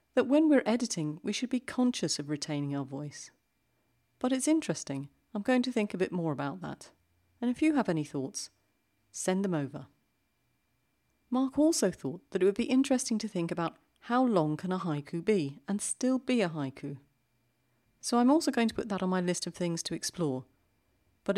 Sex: female